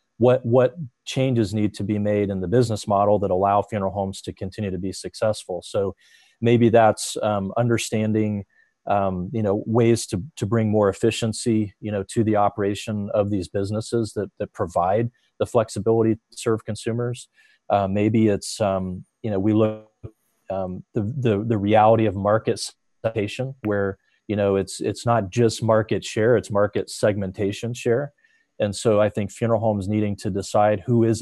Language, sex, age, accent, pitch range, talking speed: English, male, 40-59, American, 100-115 Hz, 175 wpm